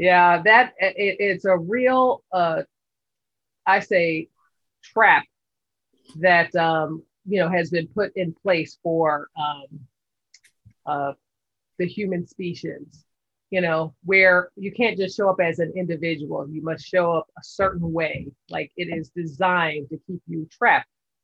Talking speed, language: 145 wpm, English